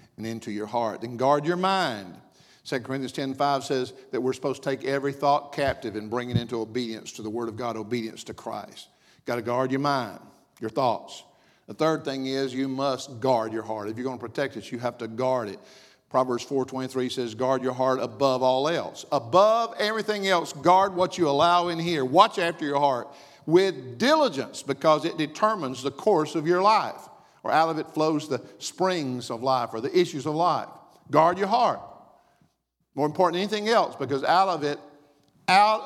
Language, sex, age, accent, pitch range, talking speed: English, male, 50-69, American, 125-165 Hz, 200 wpm